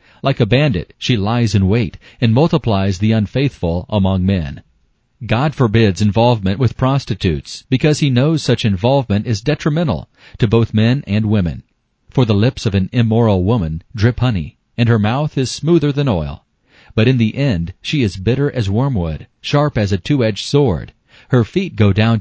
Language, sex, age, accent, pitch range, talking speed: English, male, 40-59, American, 100-125 Hz, 175 wpm